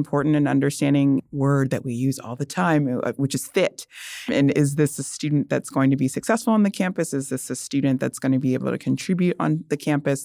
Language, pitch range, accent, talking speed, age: English, 135-160 Hz, American, 235 wpm, 20-39